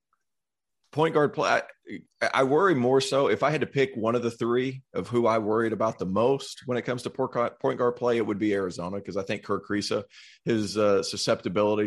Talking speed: 215 wpm